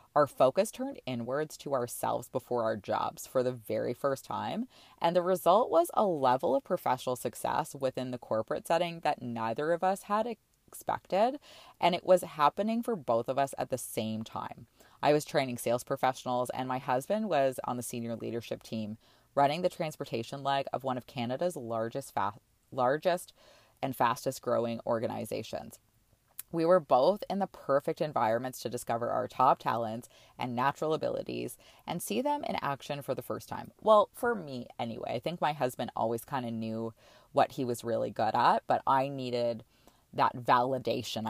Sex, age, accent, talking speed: female, 20-39, American, 175 wpm